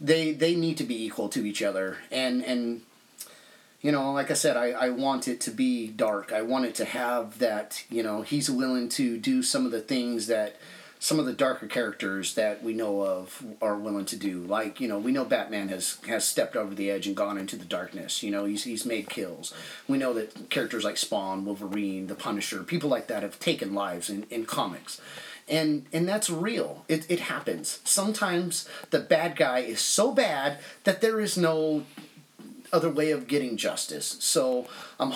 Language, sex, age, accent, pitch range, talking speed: English, male, 30-49, American, 115-175 Hz, 205 wpm